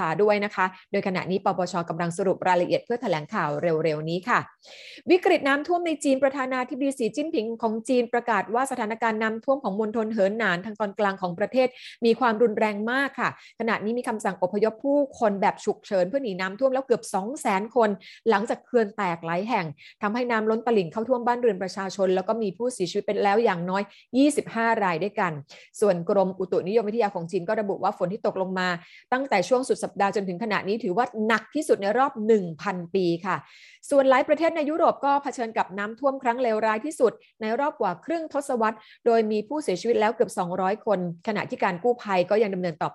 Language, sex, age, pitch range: Thai, female, 30-49, 190-245 Hz